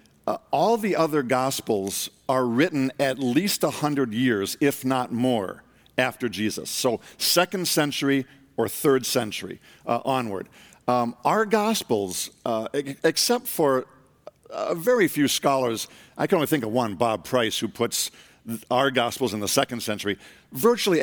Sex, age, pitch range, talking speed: male, 50-69, 115-150 Hz, 150 wpm